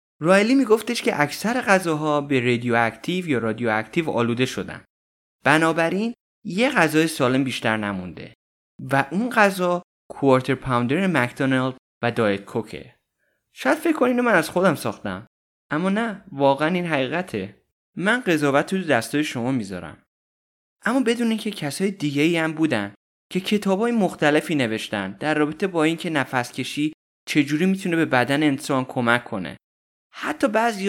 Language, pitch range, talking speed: Persian, 120-175 Hz, 135 wpm